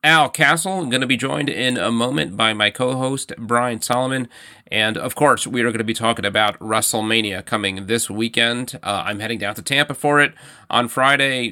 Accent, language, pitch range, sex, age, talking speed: American, English, 100-125 Hz, male, 30-49, 205 wpm